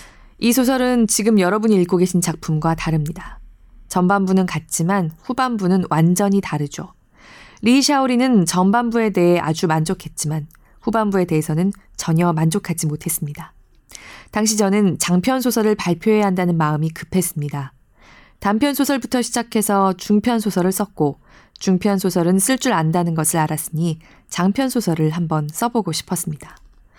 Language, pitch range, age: Korean, 160-225 Hz, 20-39